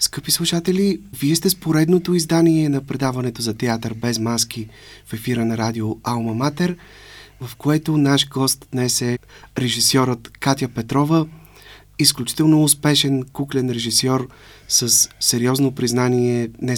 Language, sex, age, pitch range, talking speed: Bulgarian, male, 30-49, 115-135 Hz, 125 wpm